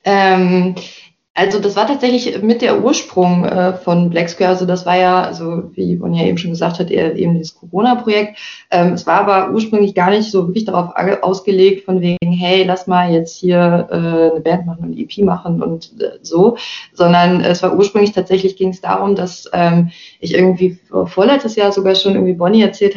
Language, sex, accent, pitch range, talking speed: German, female, German, 180-210 Hz, 200 wpm